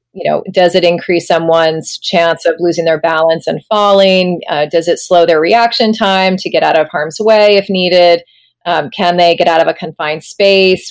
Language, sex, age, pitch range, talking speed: English, female, 30-49, 170-205 Hz, 205 wpm